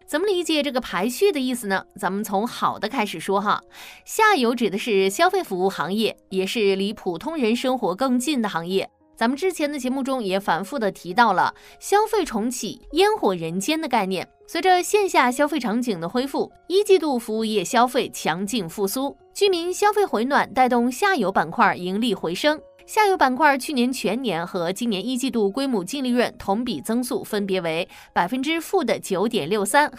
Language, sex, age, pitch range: Chinese, female, 20-39, 195-280 Hz